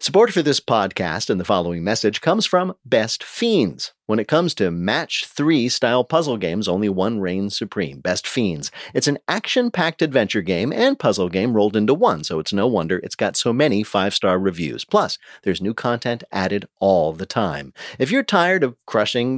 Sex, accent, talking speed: male, American, 185 wpm